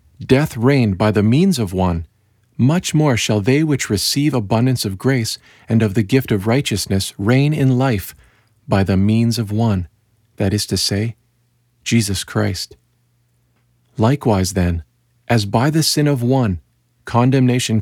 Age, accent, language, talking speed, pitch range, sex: 50-69, American, English, 150 wpm, 100-125 Hz, male